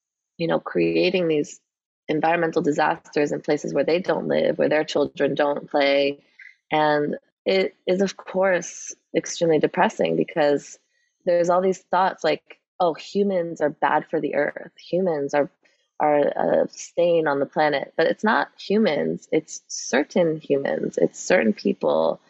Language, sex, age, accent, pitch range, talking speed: English, female, 20-39, American, 150-185 Hz, 150 wpm